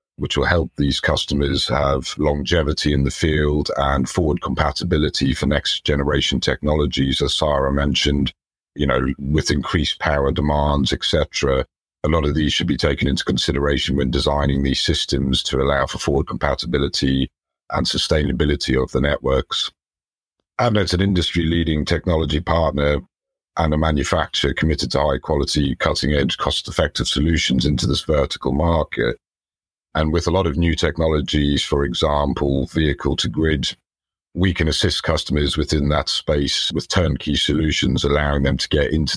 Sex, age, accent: male, 50-69, British